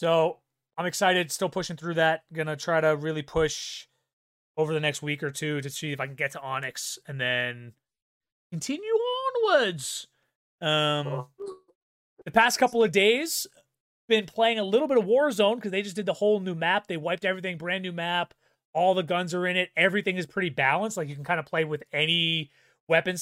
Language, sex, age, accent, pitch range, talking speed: English, male, 30-49, American, 155-215 Hz, 200 wpm